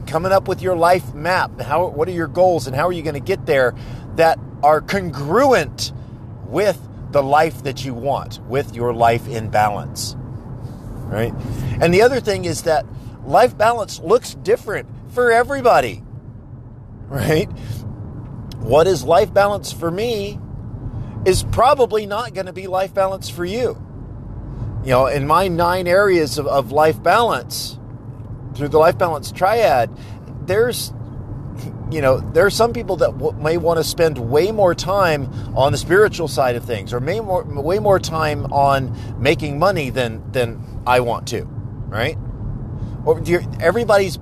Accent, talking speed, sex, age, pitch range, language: American, 155 wpm, male, 40-59, 120-165 Hz, English